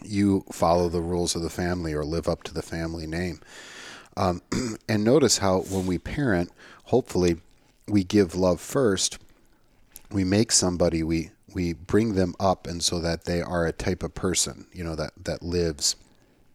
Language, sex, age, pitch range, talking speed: English, male, 40-59, 85-100 Hz, 175 wpm